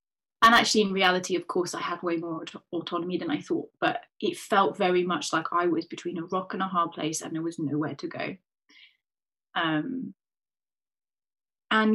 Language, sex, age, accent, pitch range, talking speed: English, female, 20-39, British, 185-225 Hz, 190 wpm